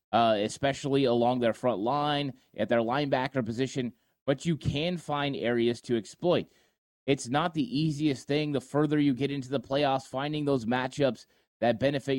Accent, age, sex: American, 30-49, male